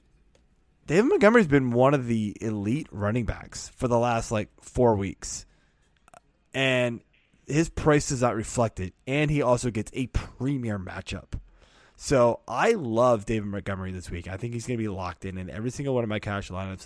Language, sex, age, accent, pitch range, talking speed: English, male, 20-39, American, 100-145 Hz, 180 wpm